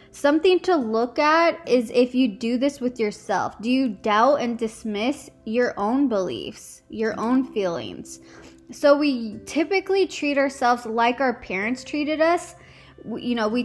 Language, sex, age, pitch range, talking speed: English, female, 10-29, 220-285 Hz, 155 wpm